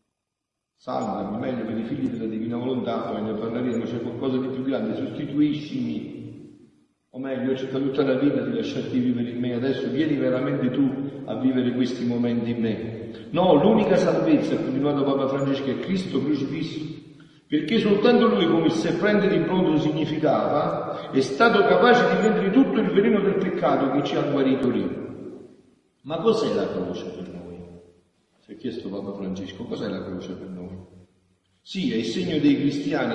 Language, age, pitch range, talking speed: Italian, 50-69, 115-155 Hz, 170 wpm